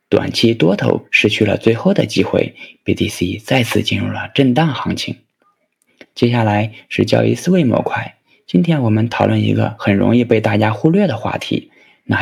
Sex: male